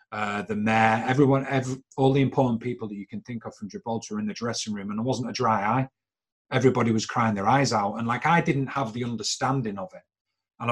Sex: male